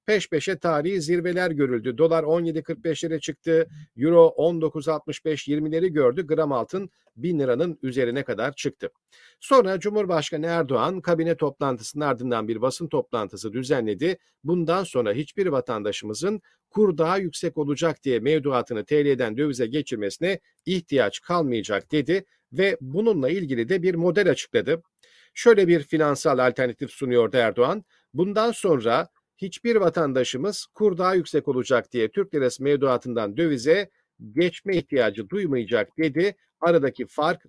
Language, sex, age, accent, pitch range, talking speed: Turkish, male, 50-69, native, 135-180 Hz, 120 wpm